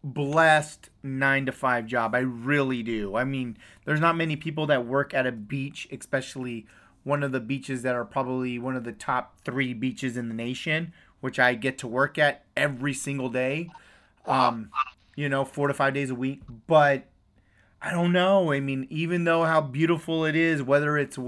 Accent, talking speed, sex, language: American, 190 wpm, male, English